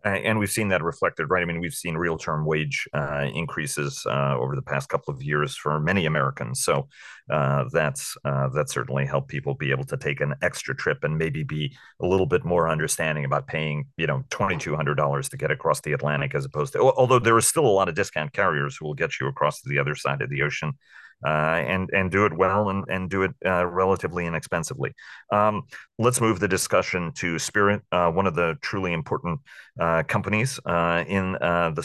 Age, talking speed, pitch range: 40-59, 220 wpm, 75-95 Hz